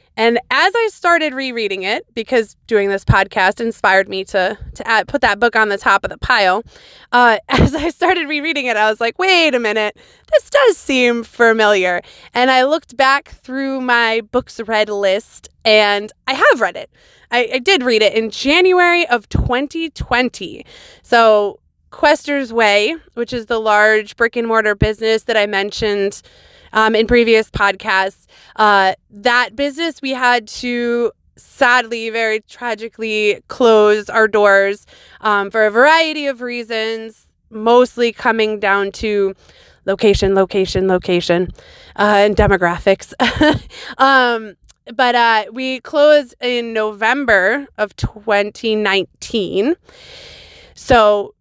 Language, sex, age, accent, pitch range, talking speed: English, female, 20-39, American, 210-255 Hz, 140 wpm